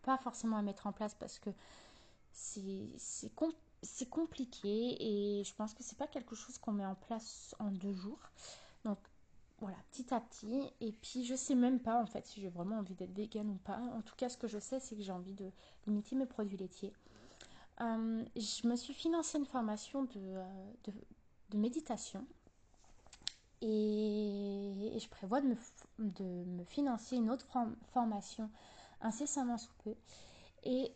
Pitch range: 210-250 Hz